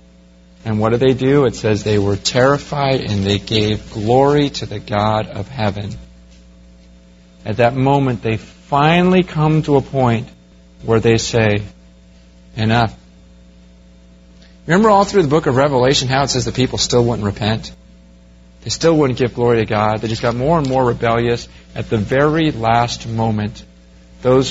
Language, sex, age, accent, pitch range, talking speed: English, male, 40-59, American, 100-145 Hz, 165 wpm